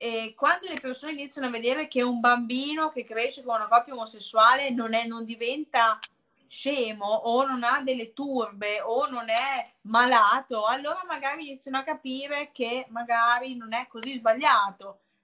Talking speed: 155 wpm